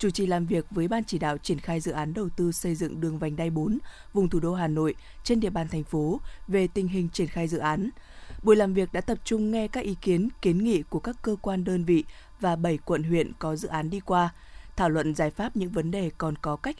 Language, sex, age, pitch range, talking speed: Vietnamese, female, 20-39, 165-210 Hz, 265 wpm